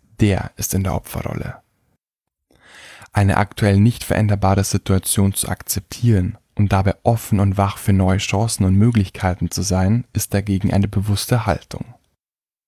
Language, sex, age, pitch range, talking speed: German, male, 10-29, 100-115 Hz, 135 wpm